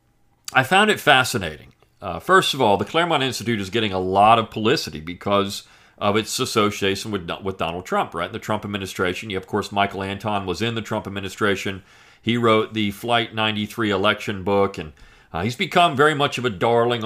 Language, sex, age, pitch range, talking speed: English, male, 40-59, 100-130 Hz, 190 wpm